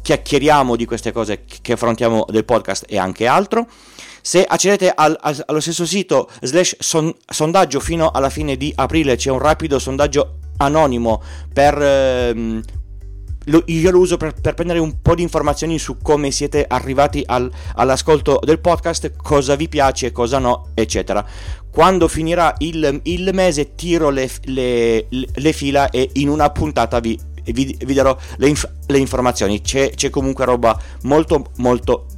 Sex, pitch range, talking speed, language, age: male, 110-155 Hz, 160 wpm, Italian, 30-49